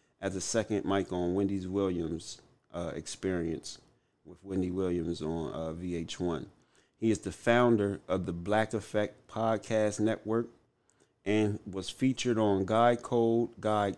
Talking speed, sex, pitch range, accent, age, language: 135 wpm, male, 90-110 Hz, American, 30-49, English